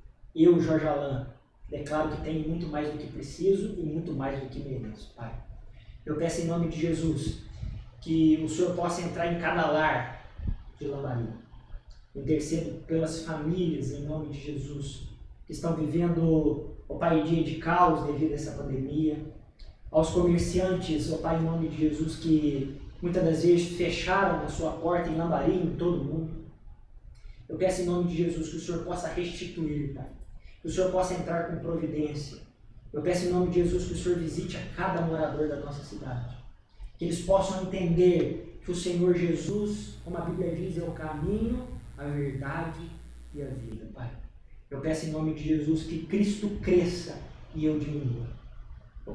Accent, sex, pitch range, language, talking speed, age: Brazilian, male, 150-175 Hz, Portuguese, 175 wpm, 20-39